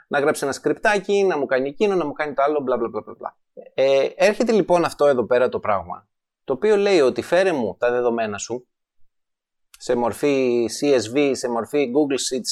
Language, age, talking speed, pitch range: Greek, 30-49, 180 wpm, 130-180 Hz